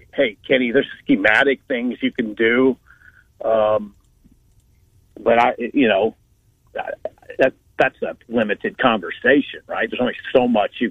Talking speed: 140 wpm